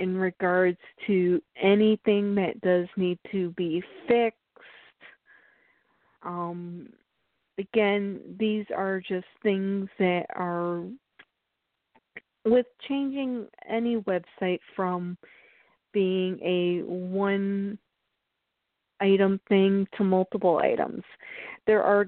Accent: American